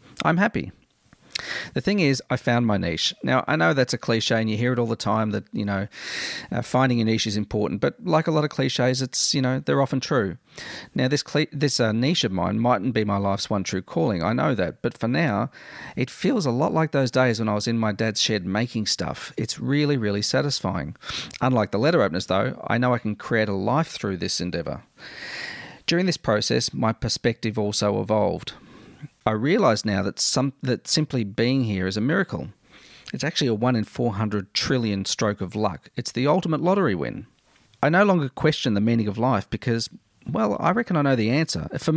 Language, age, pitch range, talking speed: English, 40-59, 105-135 Hz, 210 wpm